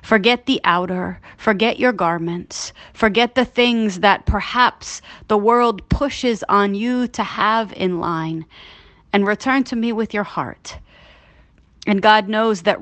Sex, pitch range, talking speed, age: female, 190-235 Hz, 145 wpm, 30-49